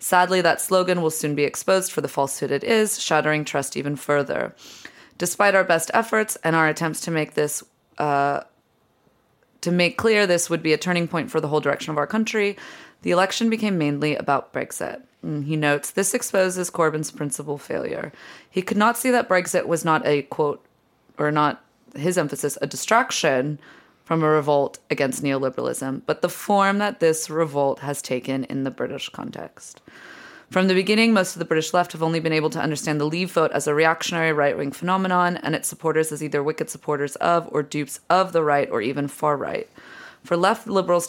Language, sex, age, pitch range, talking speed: English, female, 20-39, 145-185 Hz, 190 wpm